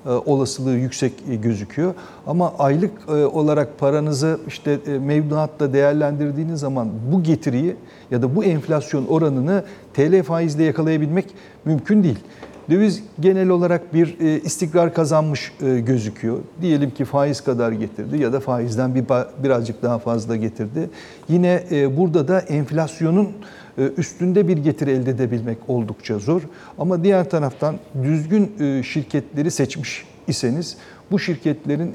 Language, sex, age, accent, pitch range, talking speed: Turkish, male, 60-79, native, 130-165 Hz, 115 wpm